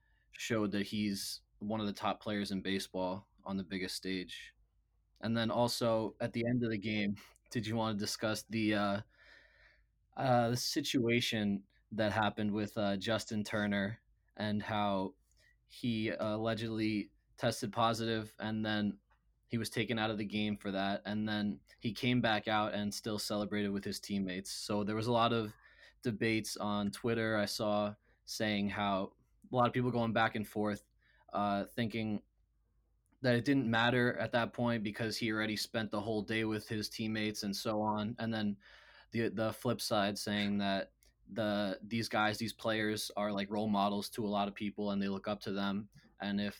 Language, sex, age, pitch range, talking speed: English, male, 20-39, 100-115 Hz, 180 wpm